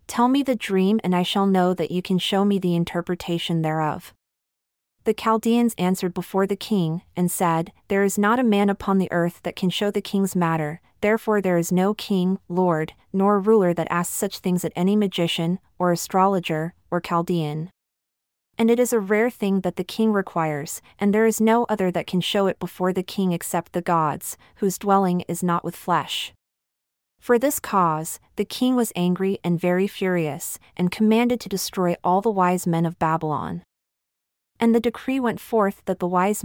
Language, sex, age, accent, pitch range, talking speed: English, female, 30-49, American, 175-205 Hz, 190 wpm